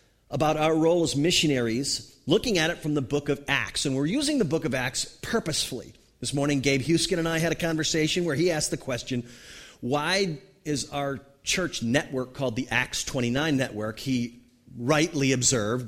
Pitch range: 125-165 Hz